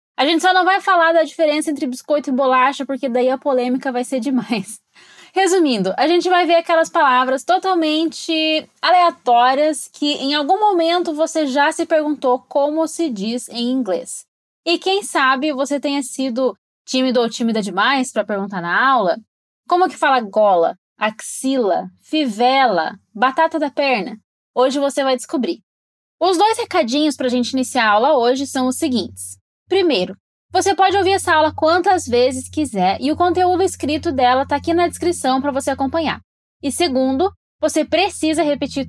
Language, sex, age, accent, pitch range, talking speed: Portuguese, female, 10-29, Brazilian, 250-330 Hz, 165 wpm